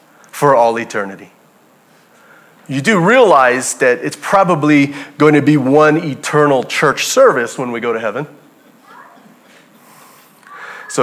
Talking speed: 120 wpm